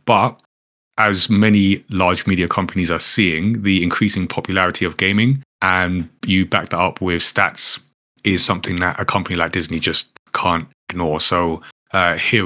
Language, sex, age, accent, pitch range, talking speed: English, male, 30-49, British, 90-110 Hz, 160 wpm